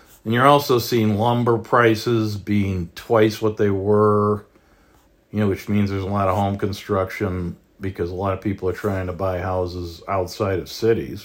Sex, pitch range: male, 95-115 Hz